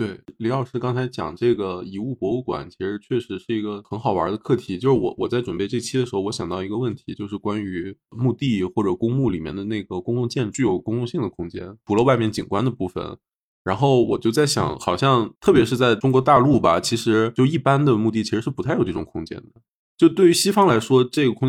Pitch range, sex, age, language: 95-120 Hz, male, 20-39, Chinese